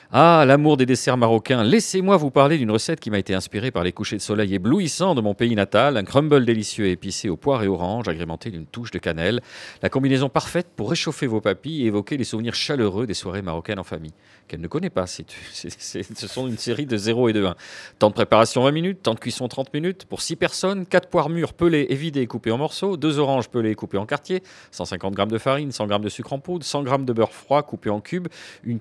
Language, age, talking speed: French, 40-59, 250 wpm